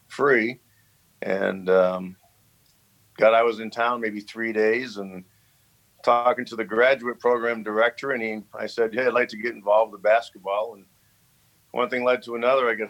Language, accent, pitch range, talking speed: English, American, 110-125 Hz, 175 wpm